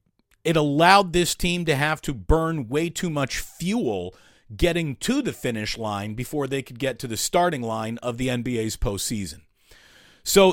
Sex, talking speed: male, 170 wpm